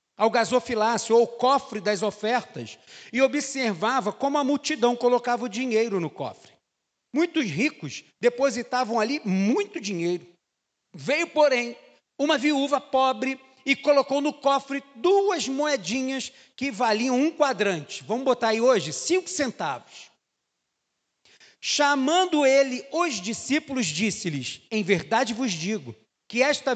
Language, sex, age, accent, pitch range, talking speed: Portuguese, male, 40-59, Brazilian, 215-280 Hz, 120 wpm